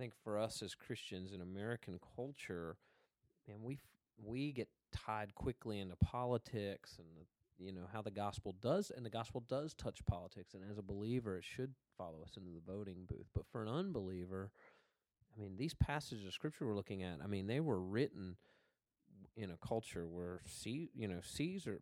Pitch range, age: 95-125 Hz, 30-49